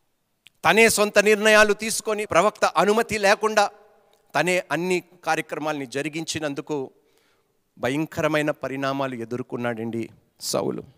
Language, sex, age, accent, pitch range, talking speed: Telugu, male, 40-59, native, 140-210 Hz, 80 wpm